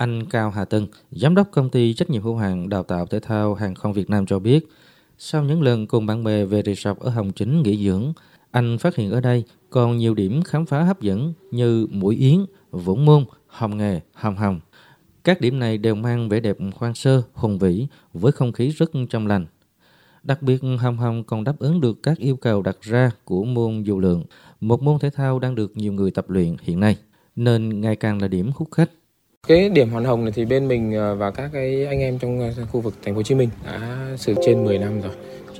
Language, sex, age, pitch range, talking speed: Vietnamese, male, 20-39, 105-130 Hz, 225 wpm